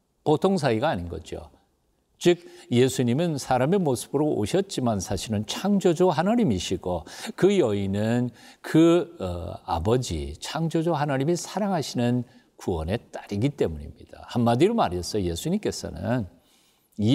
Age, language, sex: 50-69, Korean, male